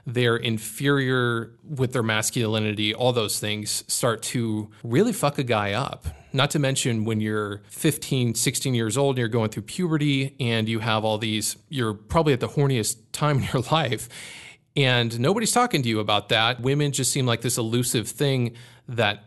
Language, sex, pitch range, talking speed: English, male, 110-135 Hz, 180 wpm